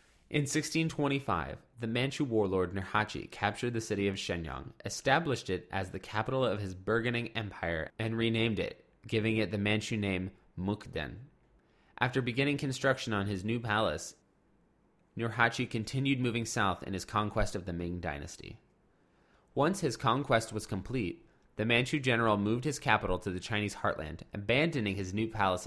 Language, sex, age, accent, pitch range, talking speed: English, male, 20-39, American, 95-120 Hz, 155 wpm